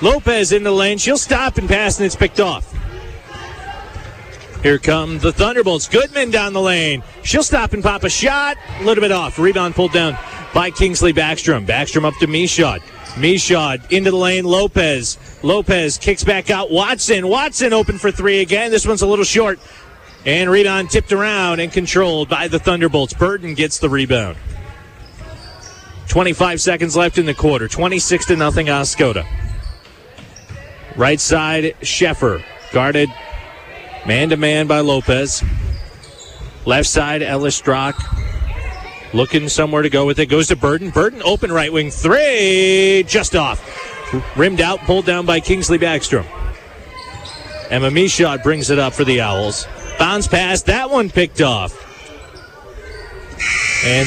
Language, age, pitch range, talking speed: English, 30-49, 135-190 Hz, 150 wpm